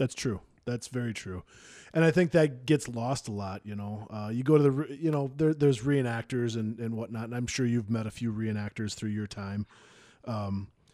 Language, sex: English, male